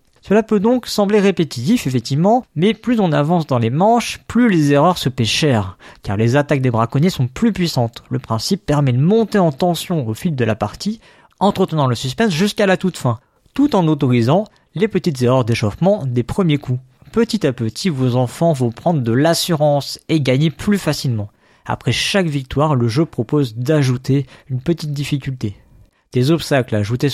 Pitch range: 125-175 Hz